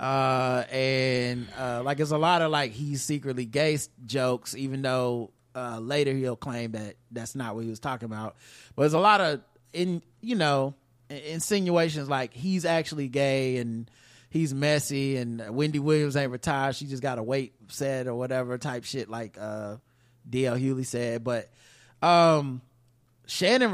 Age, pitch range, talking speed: 30-49, 120-155 Hz, 165 wpm